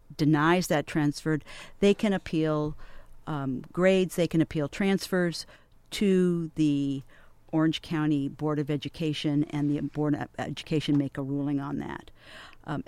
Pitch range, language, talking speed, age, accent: 145-175 Hz, English, 140 wpm, 50-69, American